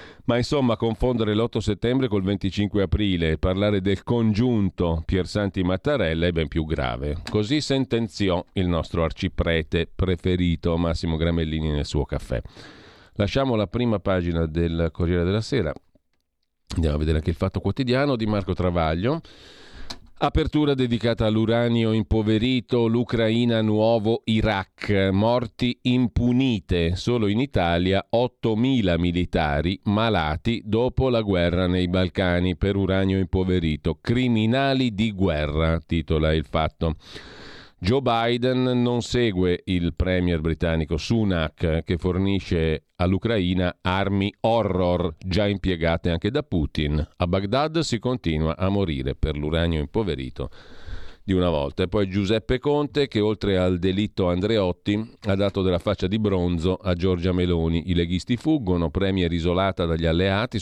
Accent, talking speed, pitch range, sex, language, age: native, 130 wpm, 85-115 Hz, male, Italian, 40-59